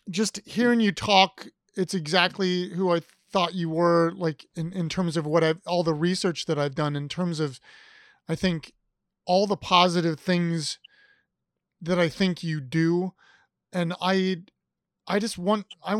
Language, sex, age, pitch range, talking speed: English, male, 30-49, 165-200 Hz, 165 wpm